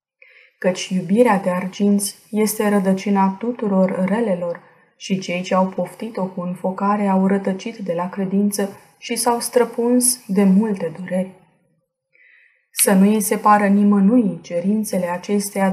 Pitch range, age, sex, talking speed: 180-215 Hz, 20-39, female, 125 wpm